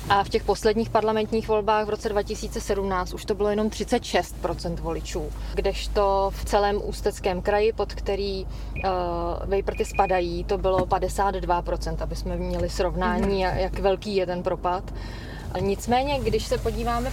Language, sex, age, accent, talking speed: Czech, female, 20-39, native, 140 wpm